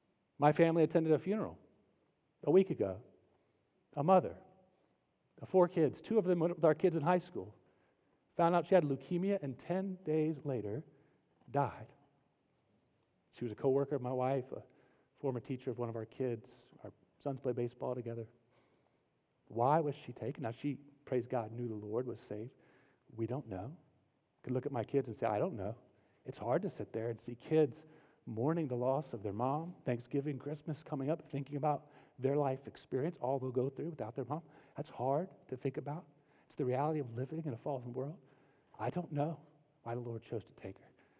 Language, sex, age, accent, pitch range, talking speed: English, male, 40-59, American, 120-155 Hz, 195 wpm